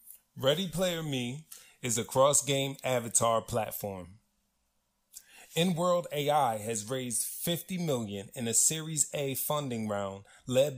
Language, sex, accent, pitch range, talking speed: English, male, American, 120-150 Hz, 115 wpm